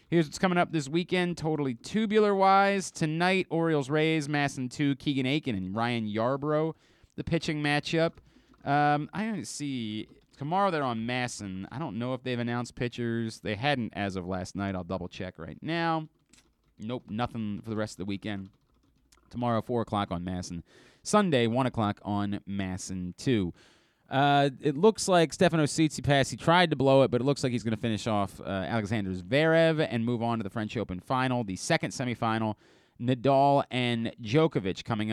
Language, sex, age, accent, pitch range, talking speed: English, male, 30-49, American, 105-150 Hz, 175 wpm